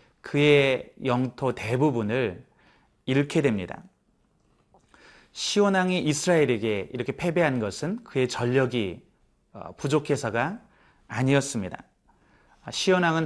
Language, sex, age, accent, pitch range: Korean, male, 30-49, native, 125-170 Hz